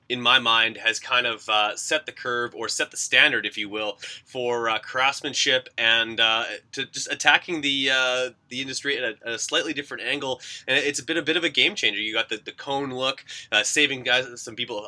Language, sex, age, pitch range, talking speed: English, male, 20-39, 110-130 Hz, 230 wpm